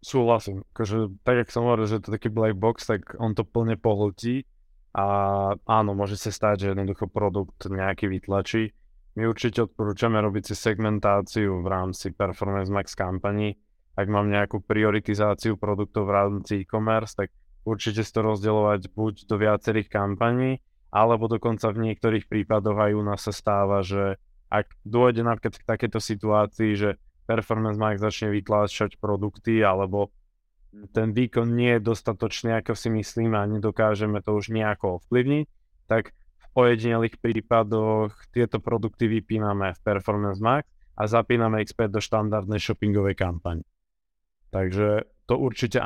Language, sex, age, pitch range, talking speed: Slovak, male, 20-39, 100-115 Hz, 150 wpm